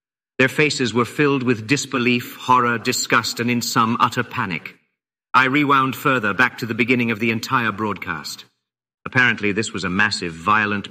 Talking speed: 165 wpm